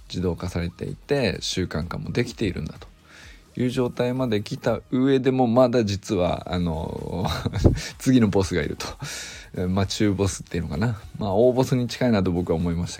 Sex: male